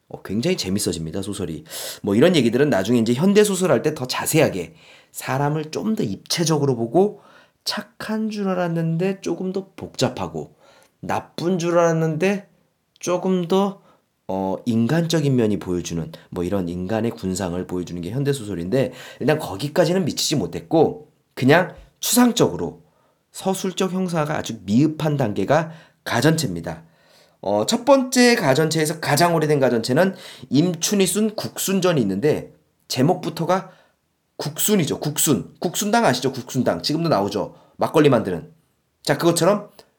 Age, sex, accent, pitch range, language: 30-49, male, native, 115-190 Hz, Korean